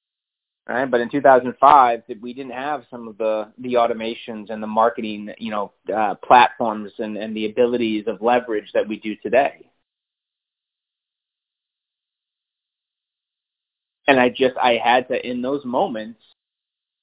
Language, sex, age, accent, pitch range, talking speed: English, male, 20-39, American, 110-140 Hz, 135 wpm